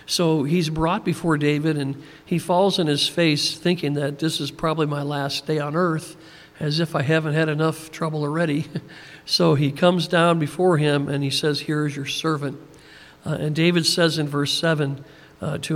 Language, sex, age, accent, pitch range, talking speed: English, male, 50-69, American, 145-165 Hz, 195 wpm